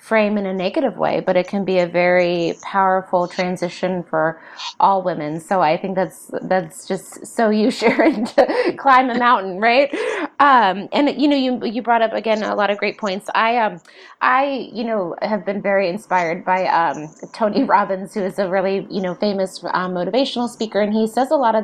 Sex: female